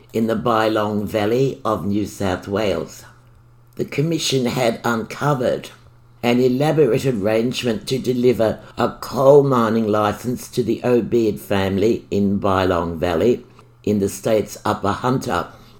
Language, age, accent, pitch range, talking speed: English, 60-79, British, 110-130 Hz, 125 wpm